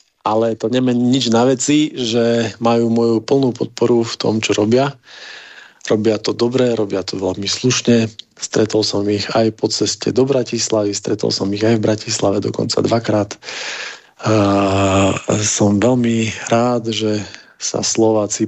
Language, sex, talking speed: Slovak, male, 145 wpm